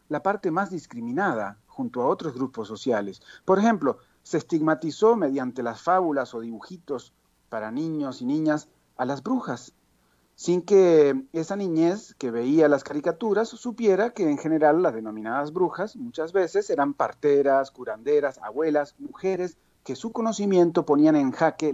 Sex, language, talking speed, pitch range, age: male, Spanish, 145 wpm, 130-205 Hz, 40-59